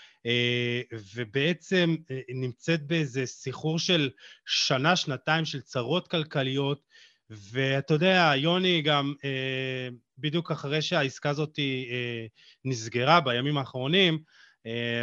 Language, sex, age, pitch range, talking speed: Hebrew, male, 30-49, 135-185 Hz, 100 wpm